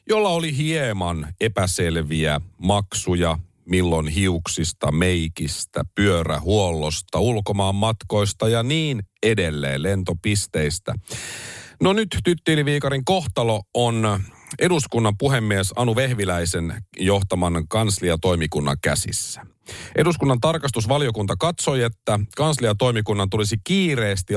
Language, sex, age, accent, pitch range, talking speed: Finnish, male, 40-59, native, 90-130 Hz, 85 wpm